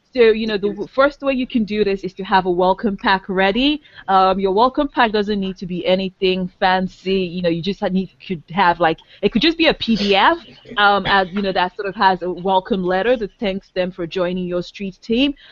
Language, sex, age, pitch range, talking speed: English, female, 20-39, 180-205 Hz, 230 wpm